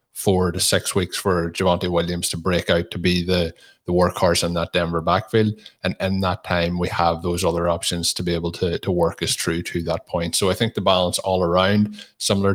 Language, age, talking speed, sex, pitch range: English, 20-39, 225 wpm, male, 85-100 Hz